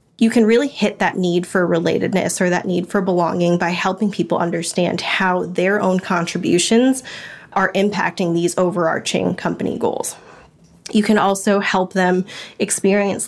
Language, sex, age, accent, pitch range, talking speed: English, female, 20-39, American, 175-205 Hz, 150 wpm